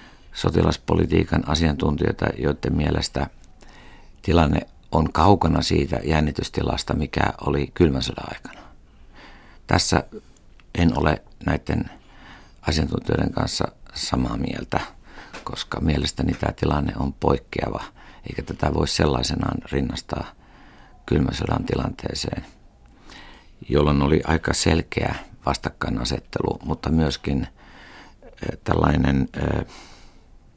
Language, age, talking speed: Finnish, 60-79, 85 wpm